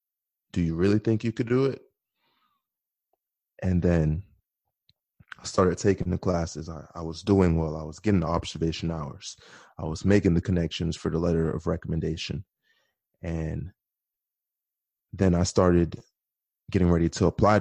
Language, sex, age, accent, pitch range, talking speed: English, male, 20-39, American, 85-100 Hz, 150 wpm